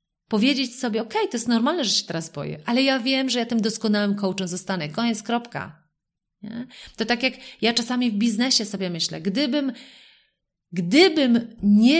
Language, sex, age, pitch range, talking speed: Polish, female, 30-49, 195-245 Hz, 170 wpm